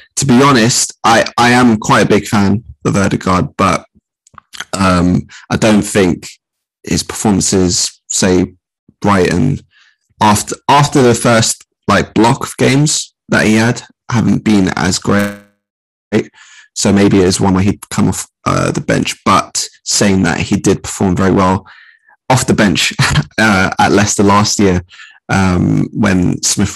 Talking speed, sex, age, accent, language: 150 wpm, male, 20-39, British, English